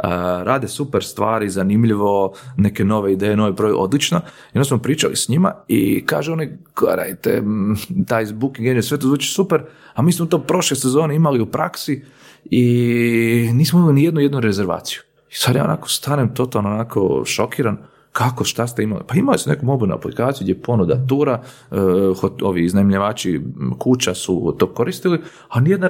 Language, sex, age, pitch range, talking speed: Croatian, male, 40-59, 100-135 Hz, 160 wpm